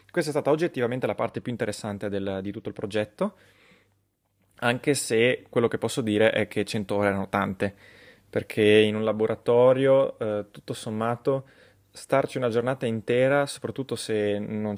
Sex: male